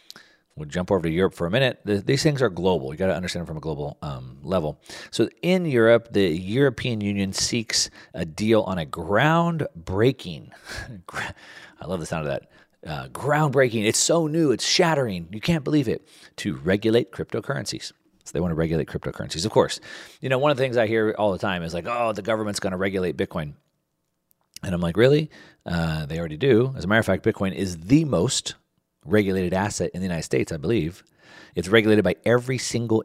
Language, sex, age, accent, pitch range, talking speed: English, male, 40-59, American, 90-125 Hz, 200 wpm